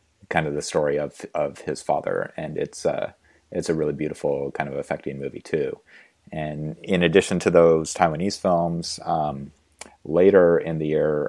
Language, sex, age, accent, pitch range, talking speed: English, male, 30-49, American, 75-90 Hz, 175 wpm